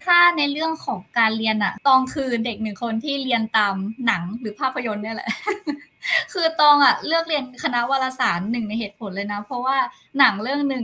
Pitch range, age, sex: 220-275 Hz, 20-39, female